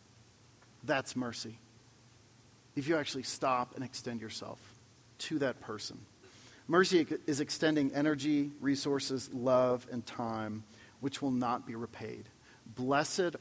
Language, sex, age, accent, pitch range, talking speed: English, male, 40-59, American, 120-185 Hz, 115 wpm